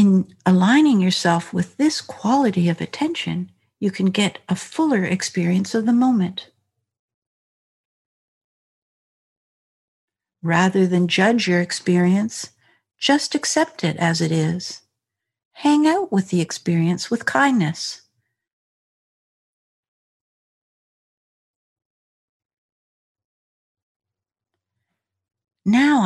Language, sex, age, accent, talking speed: English, female, 60-79, American, 85 wpm